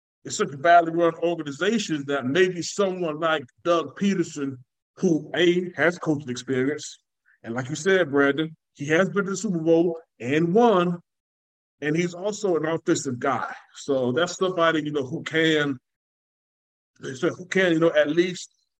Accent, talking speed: American, 165 wpm